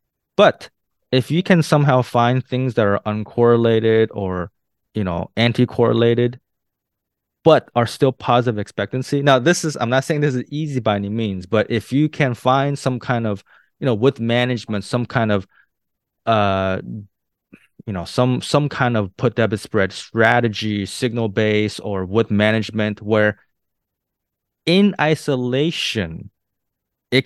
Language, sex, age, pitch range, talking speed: English, male, 20-39, 105-135 Hz, 145 wpm